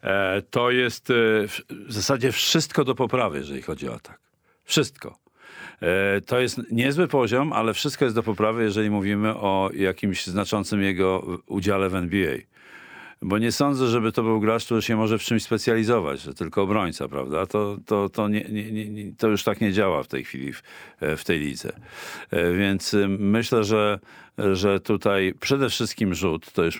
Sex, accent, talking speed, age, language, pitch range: male, native, 170 wpm, 50-69, Polish, 95-110 Hz